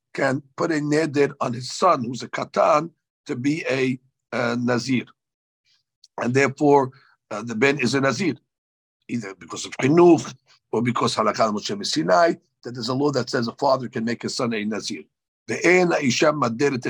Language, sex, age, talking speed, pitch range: English, male, 60-79, 155 wpm, 125-155 Hz